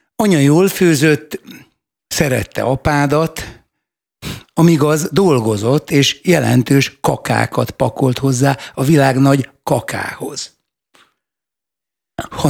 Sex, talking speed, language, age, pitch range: male, 80 wpm, Hungarian, 60-79, 135-165 Hz